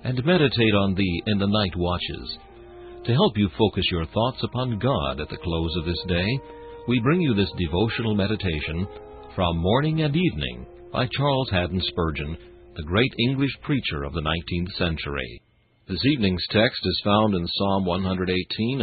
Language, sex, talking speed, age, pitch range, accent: English, male, 165 wpm, 60-79, 90-120 Hz, American